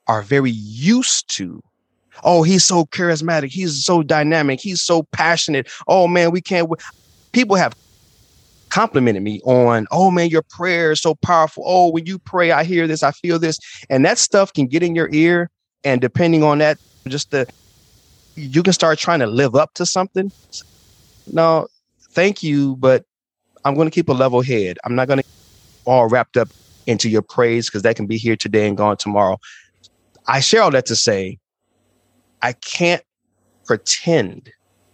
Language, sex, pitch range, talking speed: English, male, 110-160 Hz, 175 wpm